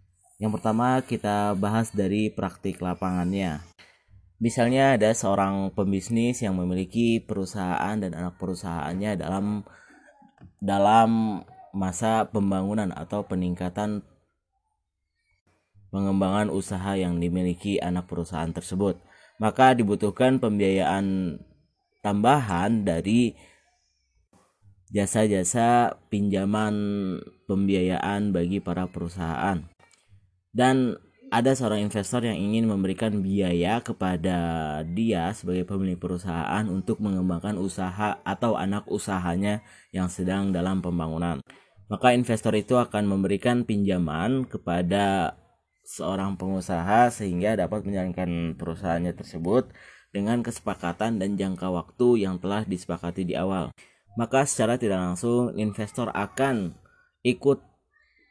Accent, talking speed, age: native, 100 wpm, 20-39